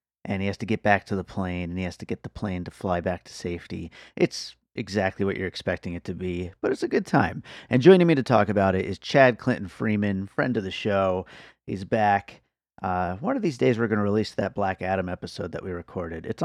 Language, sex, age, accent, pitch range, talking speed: English, male, 30-49, American, 95-110 Hz, 250 wpm